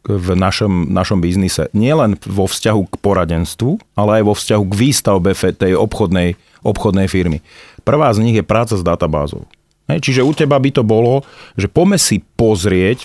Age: 40-59